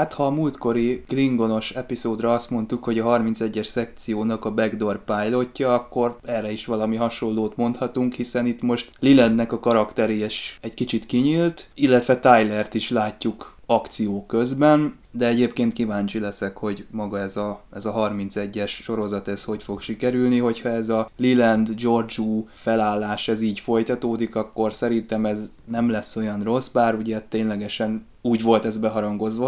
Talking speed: 150 wpm